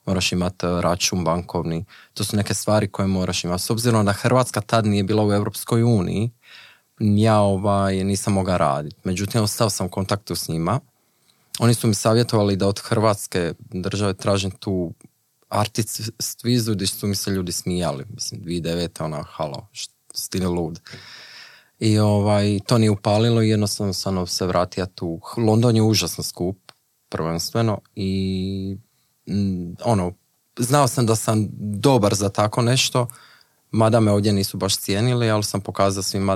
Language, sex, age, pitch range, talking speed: Croatian, male, 20-39, 95-115 Hz, 155 wpm